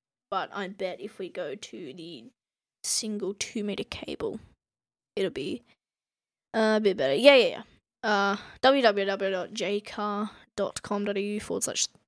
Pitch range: 210-255 Hz